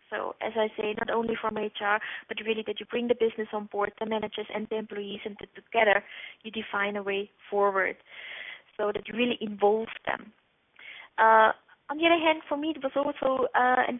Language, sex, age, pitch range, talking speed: English, female, 20-39, 220-255 Hz, 200 wpm